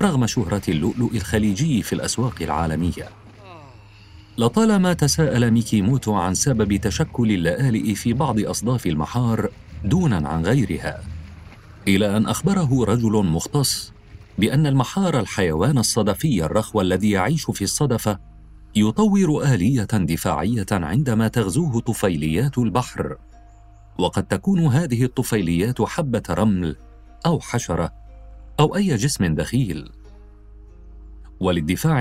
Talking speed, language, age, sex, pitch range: 105 wpm, Arabic, 40-59, male, 95-125 Hz